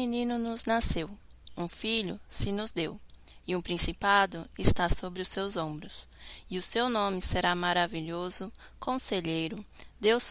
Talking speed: 145 wpm